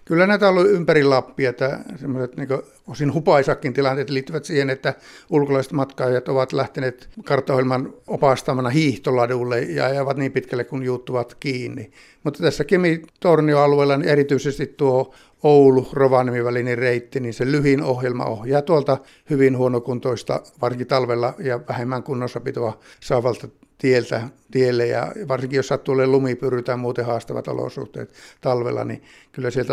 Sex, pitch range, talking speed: male, 125-140 Hz, 135 wpm